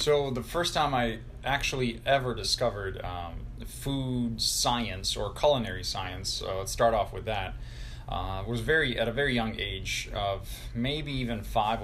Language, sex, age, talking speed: English, male, 20-39, 160 wpm